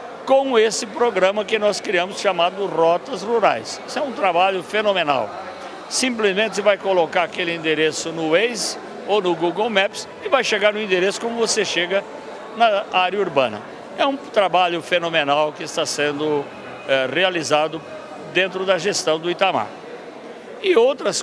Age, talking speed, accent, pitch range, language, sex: 60-79, 145 wpm, Brazilian, 160-205 Hz, Portuguese, male